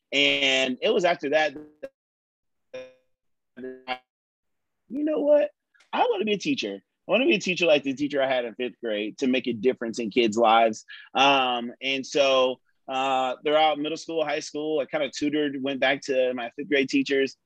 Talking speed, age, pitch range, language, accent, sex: 190 wpm, 30-49, 130-155 Hz, English, American, male